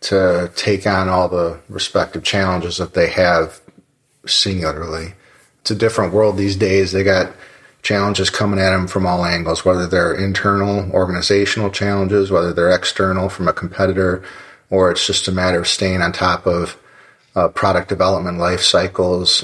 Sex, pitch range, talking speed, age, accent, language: male, 85-95 Hz, 160 wpm, 30-49, American, English